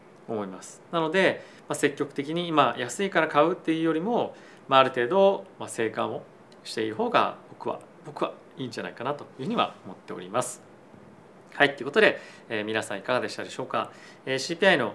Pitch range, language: 110-155 Hz, Japanese